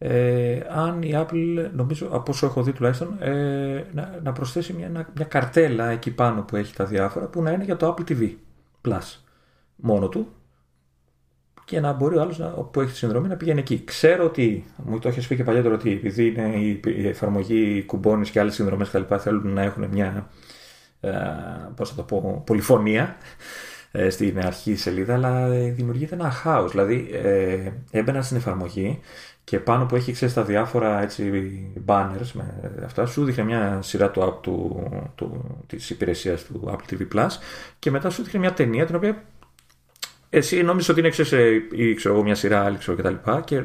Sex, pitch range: male, 100-145 Hz